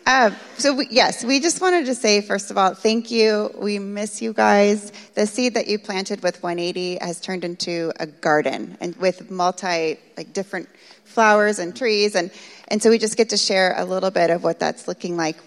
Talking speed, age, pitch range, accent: 205 wpm, 30-49, 180-235 Hz, American